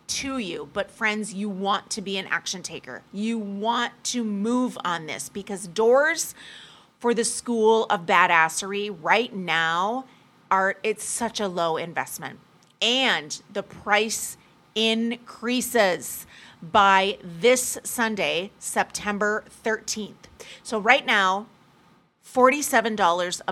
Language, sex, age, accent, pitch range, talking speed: English, female, 30-49, American, 185-225 Hz, 115 wpm